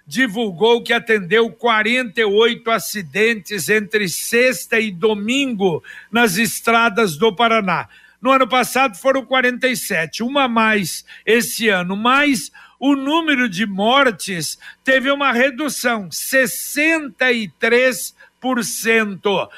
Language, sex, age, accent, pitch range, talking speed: Portuguese, male, 60-79, Brazilian, 210-255 Hz, 100 wpm